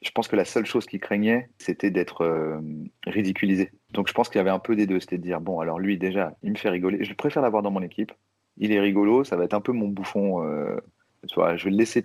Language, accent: French, French